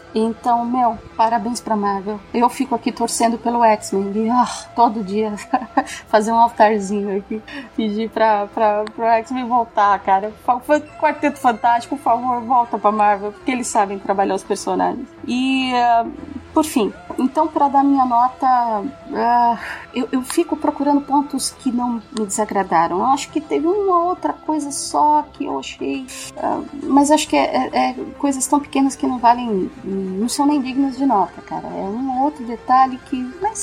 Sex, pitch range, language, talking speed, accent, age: female, 220-280 Hz, Portuguese, 170 wpm, Brazilian, 30-49